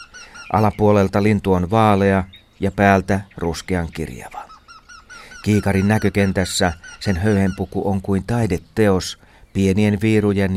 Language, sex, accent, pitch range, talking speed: Finnish, male, native, 95-110 Hz, 95 wpm